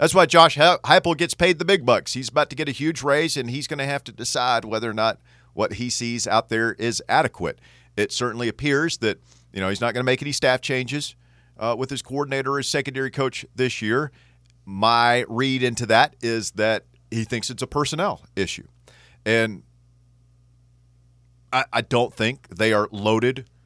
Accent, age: American, 40-59